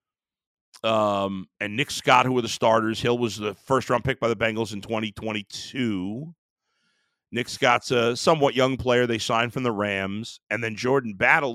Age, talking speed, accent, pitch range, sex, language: 50-69, 175 wpm, American, 110-150 Hz, male, English